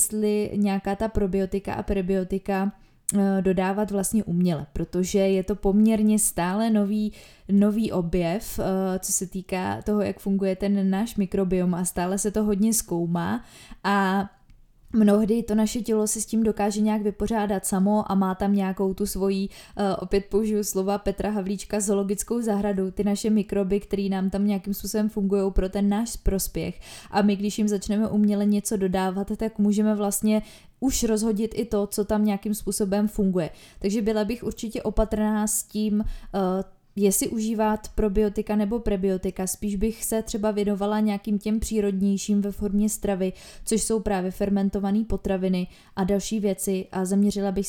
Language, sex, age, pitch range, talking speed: Czech, female, 20-39, 195-210 Hz, 160 wpm